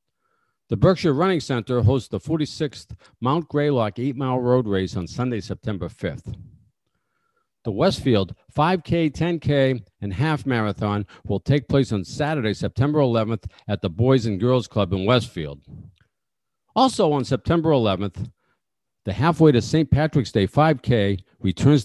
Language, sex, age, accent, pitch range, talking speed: English, male, 50-69, American, 105-145 Hz, 135 wpm